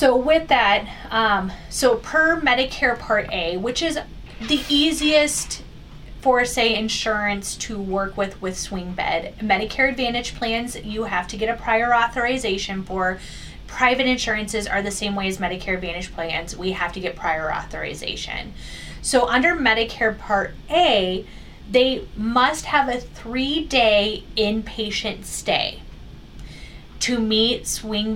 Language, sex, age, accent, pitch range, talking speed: English, female, 30-49, American, 195-245 Hz, 135 wpm